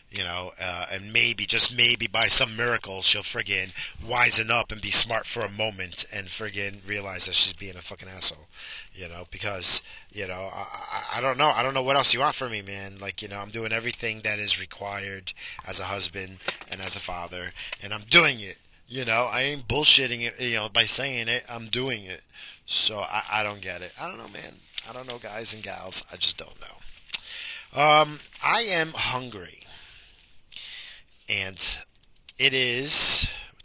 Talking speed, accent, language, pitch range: 195 wpm, American, English, 100-125 Hz